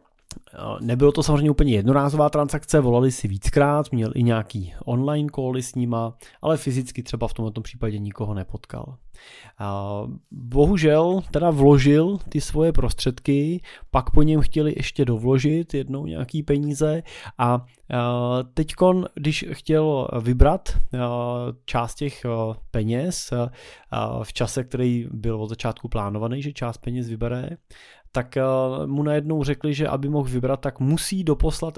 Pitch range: 115-145 Hz